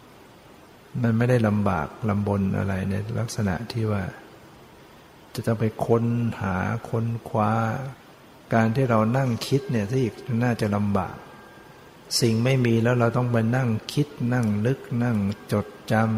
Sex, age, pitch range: male, 60-79, 105-120 Hz